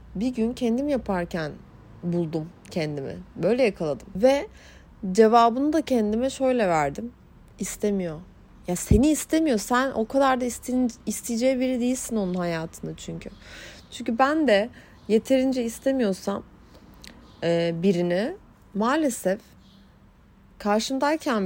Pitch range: 185-260 Hz